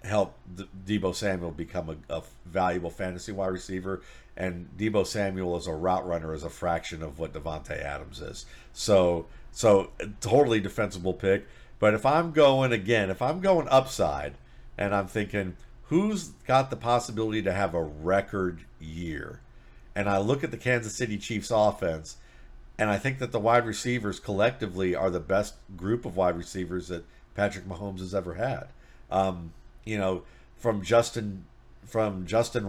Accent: American